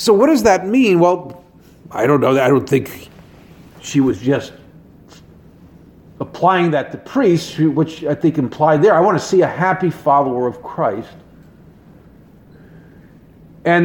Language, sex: English, male